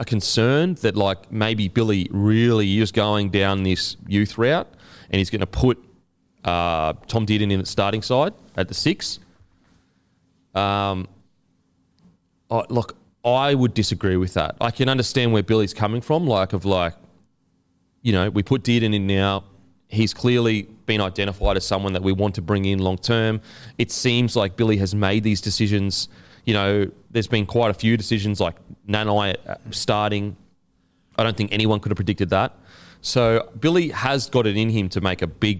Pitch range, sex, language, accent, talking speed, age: 90-110 Hz, male, English, Australian, 175 wpm, 30-49